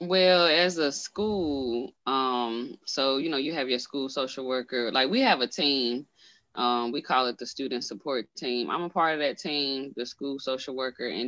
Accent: American